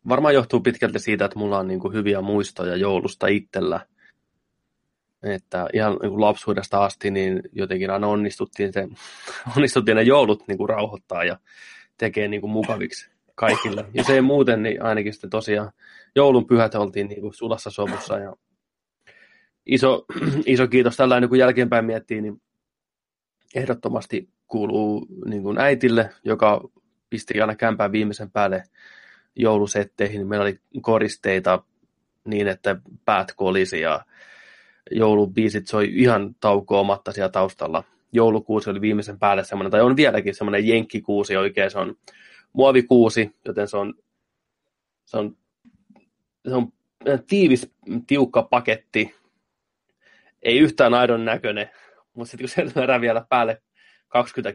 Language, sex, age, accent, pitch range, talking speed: Finnish, male, 20-39, native, 105-120 Hz, 115 wpm